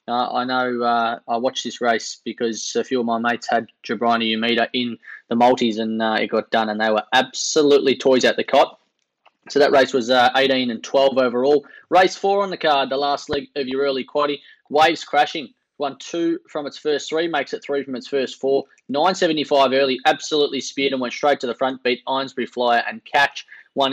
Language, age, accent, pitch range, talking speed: English, 20-39, Australian, 125-150 Hz, 215 wpm